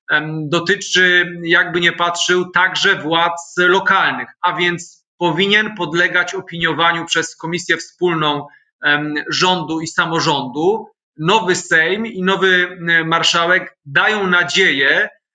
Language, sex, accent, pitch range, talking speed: Polish, male, native, 155-185 Hz, 100 wpm